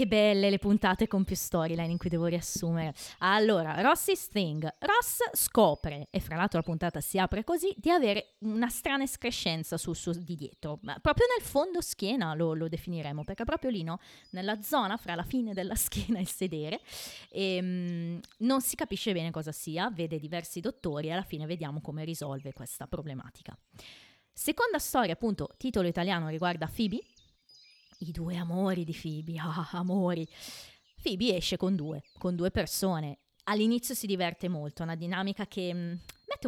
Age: 20-39